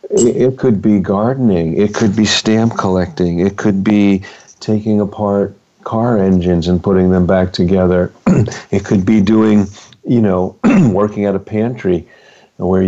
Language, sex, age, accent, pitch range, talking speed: English, male, 50-69, American, 90-105 Hz, 150 wpm